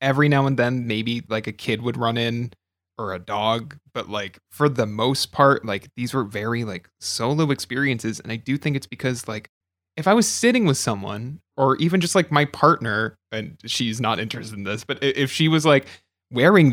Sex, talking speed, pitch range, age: male, 210 wpm, 110-155 Hz, 20-39